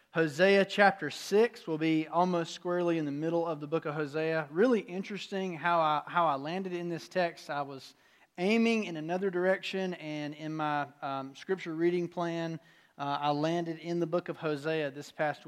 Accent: American